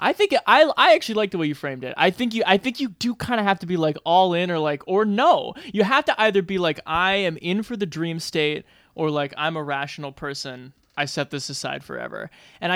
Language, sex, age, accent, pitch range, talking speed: English, male, 20-39, American, 150-200 Hz, 265 wpm